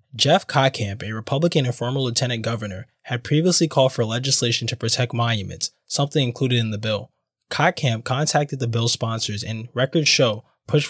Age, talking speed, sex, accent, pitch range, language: 20-39, 165 wpm, male, American, 110-135 Hz, English